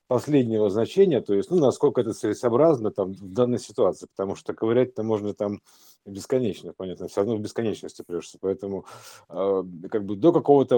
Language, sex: Russian, male